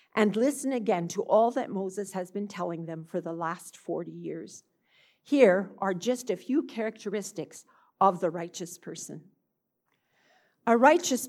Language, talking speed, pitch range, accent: English, 150 wpm, 180-240 Hz, American